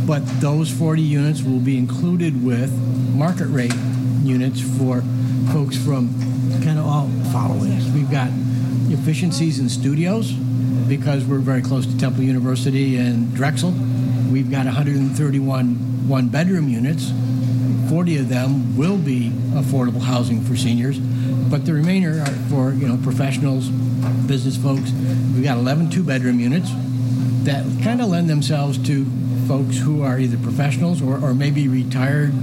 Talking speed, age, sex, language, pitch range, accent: 140 wpm, 60-79, male, English, 125-135 Hz, American